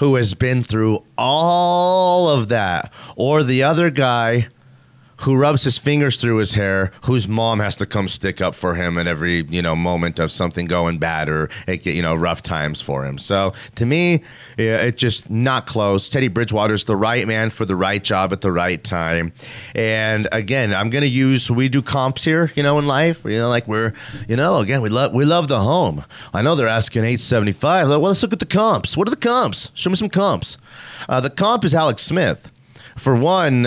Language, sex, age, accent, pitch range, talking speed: English, male, 30-49, American, 100-140 Hz, 215 wpm